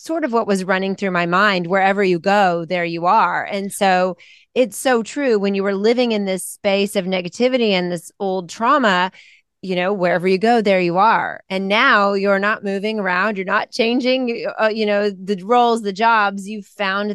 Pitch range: 175-205 Hz